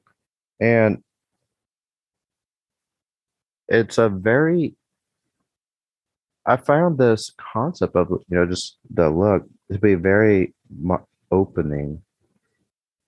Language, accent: English, American